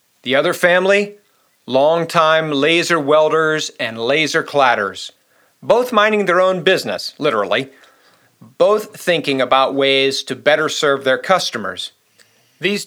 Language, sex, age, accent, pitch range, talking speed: English, male, 40-59, American, 130-170 Hz, 115 wpm